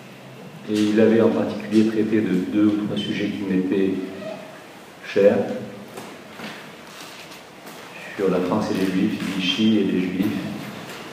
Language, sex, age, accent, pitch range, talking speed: French, male, 50-69, French, 95-110 Hz, 130 wpm